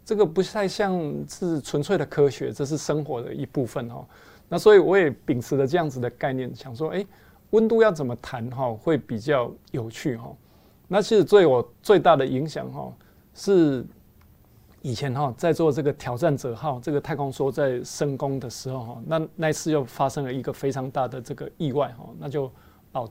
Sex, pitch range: male, 135-185 Hz